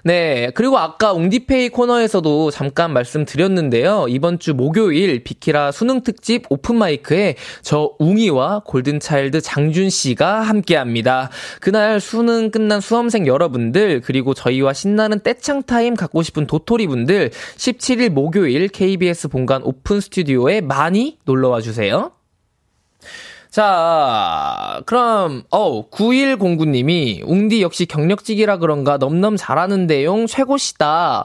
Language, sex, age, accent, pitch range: Korean, male, 20-39, native, 140-215 Hz